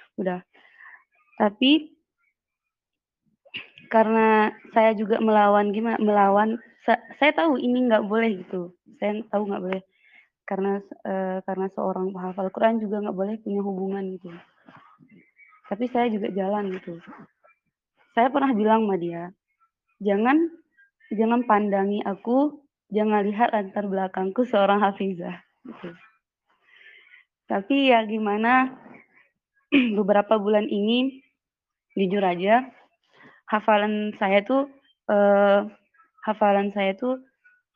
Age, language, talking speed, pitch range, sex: 20-39, Indonesian, 105 wpm, 200-245 Hz, female